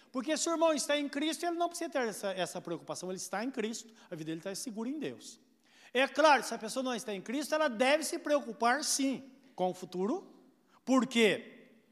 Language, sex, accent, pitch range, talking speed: Portuguese, male, Brazilian, 185-270 Hz, 215 wpm